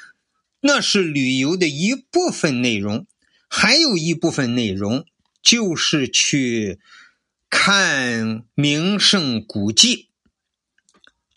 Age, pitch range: 50-69, 145-235 Hz